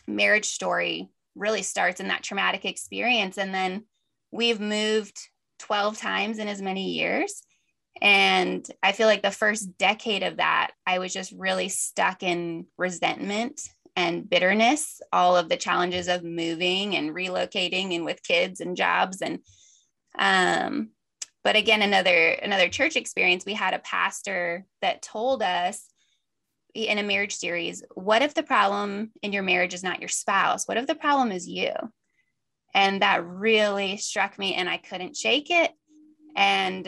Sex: female